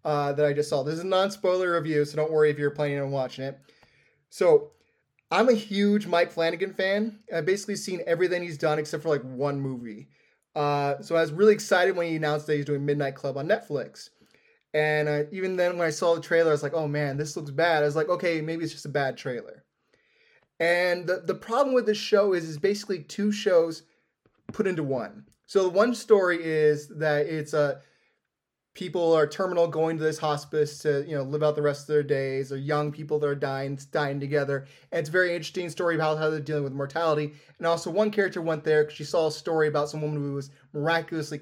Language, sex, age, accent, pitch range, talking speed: English, male, 20-39, American, 150-190 Hz, 225 wpm